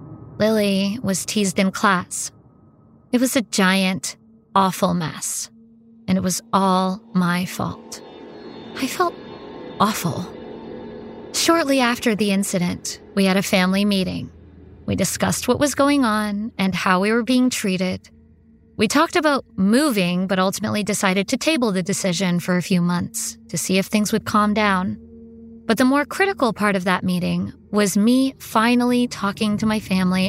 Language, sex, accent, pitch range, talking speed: English, female, American, 185-240 Hz, 155 wpm